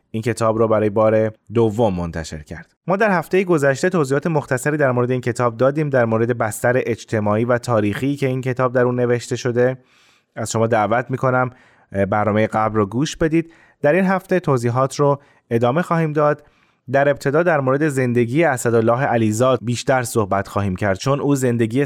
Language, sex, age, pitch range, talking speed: Persian, male, 20-39, 115-140 Hz, 175 wpm